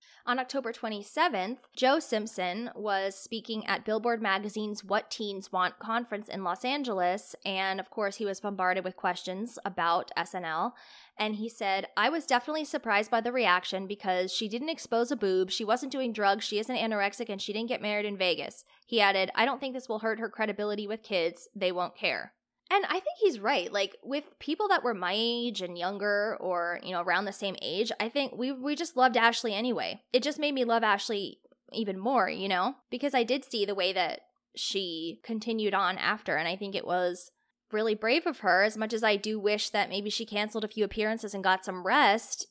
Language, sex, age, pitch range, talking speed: English, female, 20-39, 195-245 Hz, 210 wpm